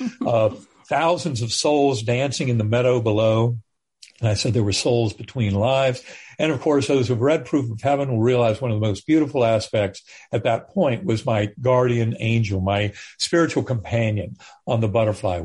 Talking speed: 185 wpm